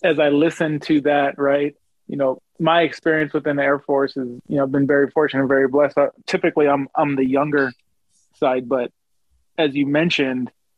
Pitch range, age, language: 140-155 Hz, 20-39, English